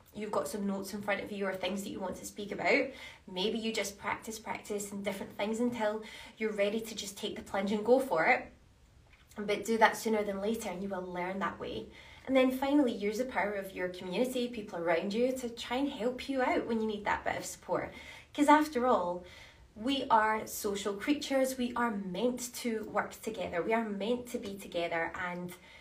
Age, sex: 20-39, female